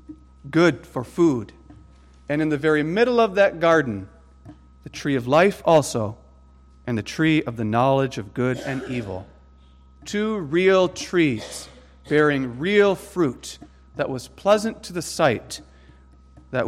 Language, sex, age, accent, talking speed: English, male, 40-59, American, 140 wpm